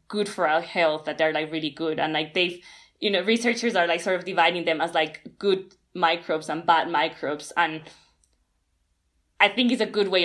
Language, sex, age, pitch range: Chinese, female, 20-39, 165-195 Hz